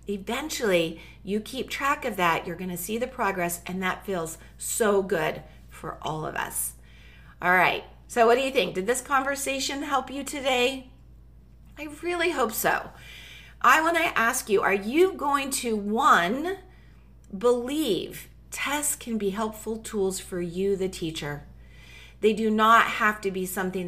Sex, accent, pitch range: female, American, 180-290 Hz